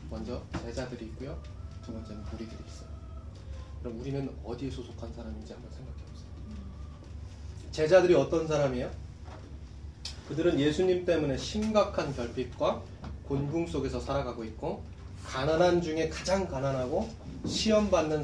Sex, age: male, 20-39